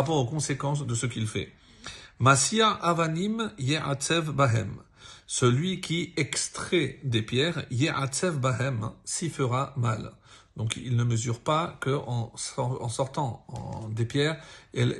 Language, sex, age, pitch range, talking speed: French, male, 50-69, 120-150 Hz, 125 wpm